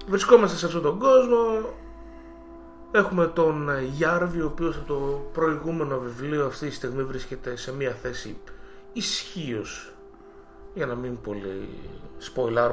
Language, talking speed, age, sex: Greek, 130 wpm, 30-49, male